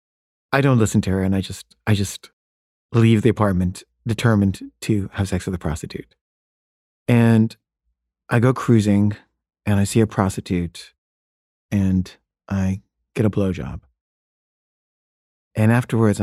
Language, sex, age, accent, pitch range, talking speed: English, male, 30-49, American, 80-115 Hz, 135 wpm